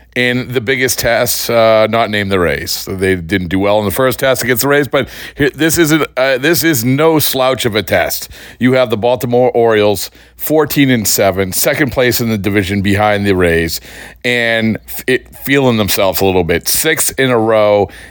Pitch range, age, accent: 95-130 Hz, 40-59, American